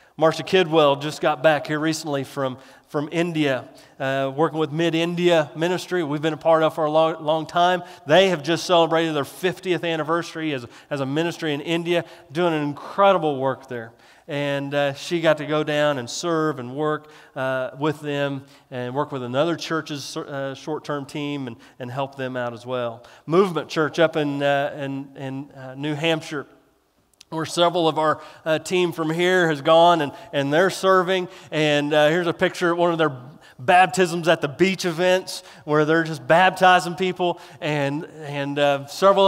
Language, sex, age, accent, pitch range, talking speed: English, male, 30-49, American, 145-170 Hz, 190 wpm